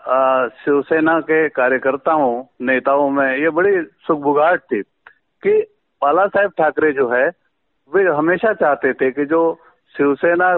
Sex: male